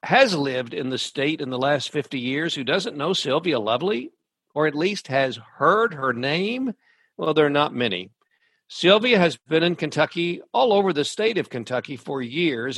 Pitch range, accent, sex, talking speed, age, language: 125-170 Hz, American, male, 190 wpm, 60-79, English